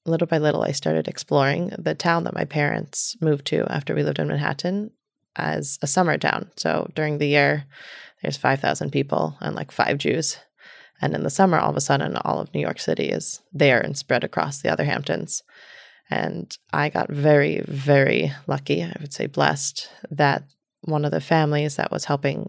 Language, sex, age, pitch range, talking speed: English, female, 20-39, 145-170 Hz, 190 wpm